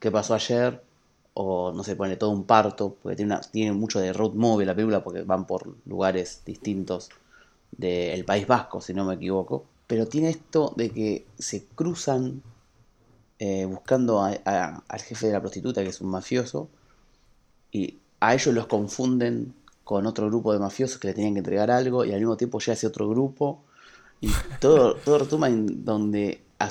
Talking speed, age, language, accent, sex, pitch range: 190 wpm, 30-49, Spanish, Argentinian, male, 100-125 Hz